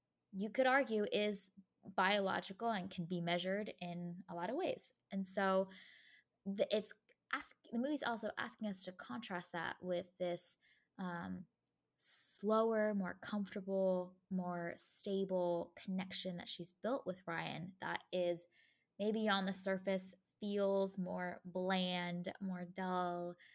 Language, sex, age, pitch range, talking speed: English, female, 20-39, 180-220 Hz, 130 wpm